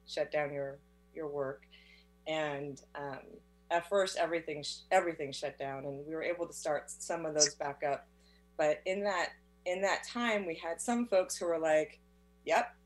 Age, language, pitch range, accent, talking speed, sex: 30-49, English, 145-215 Hz, American, 175 wpm, female